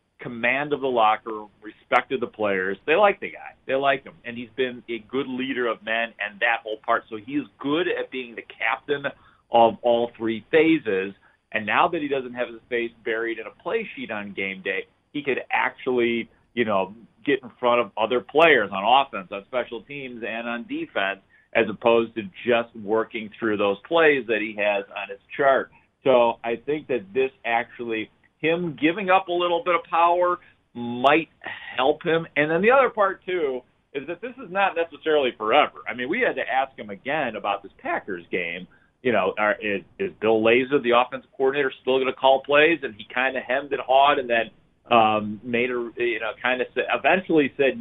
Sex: male